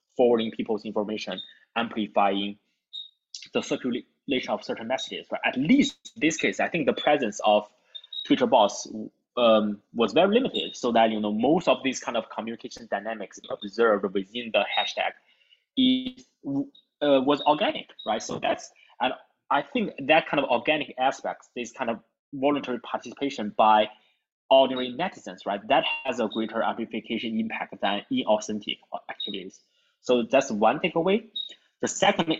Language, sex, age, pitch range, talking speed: English, male, 20-39, 110-180 Hz, 150 wpm